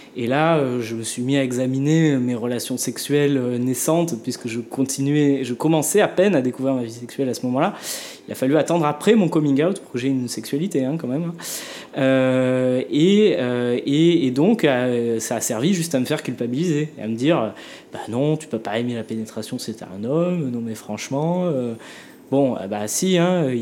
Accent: French